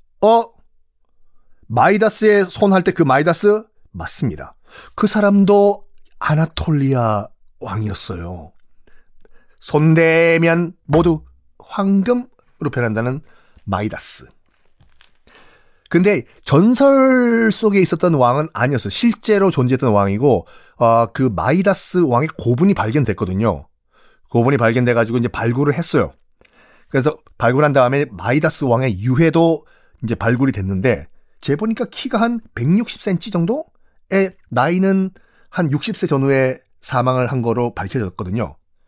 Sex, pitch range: male, 115-180 Hz